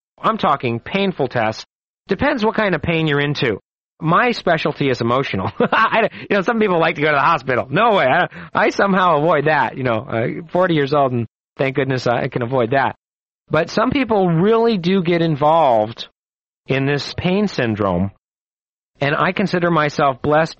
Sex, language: male, English